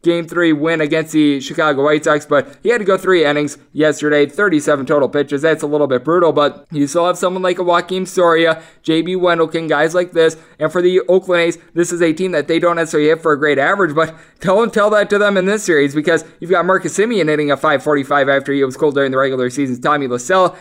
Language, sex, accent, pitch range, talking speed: English, male, American, 150-180 Hz, 240 wpm